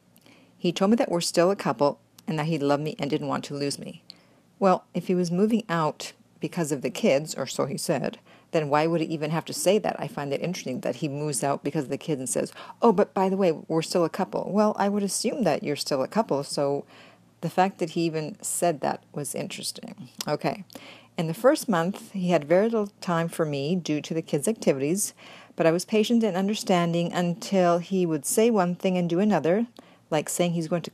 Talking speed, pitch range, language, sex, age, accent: 235 wpm, 150-185 Hz, English, female, 50-69, American